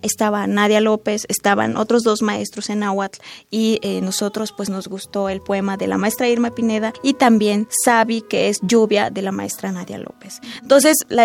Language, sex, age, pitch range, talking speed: Spanish, female, 20-39, 200-245 Hz, 185 wpm